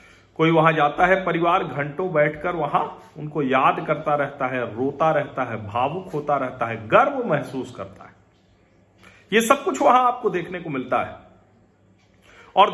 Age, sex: 40-59, male